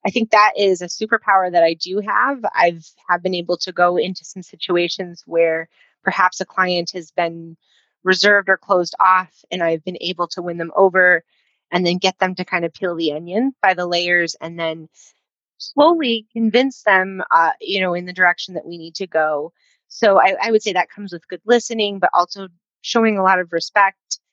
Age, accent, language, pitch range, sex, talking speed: 30-49, American, English, 170-200 Hz, female, 205 wpm